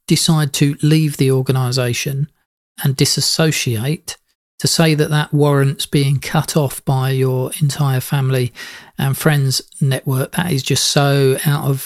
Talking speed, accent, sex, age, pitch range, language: 135 wpm, British, male, 40-59, 135-170 Hz, English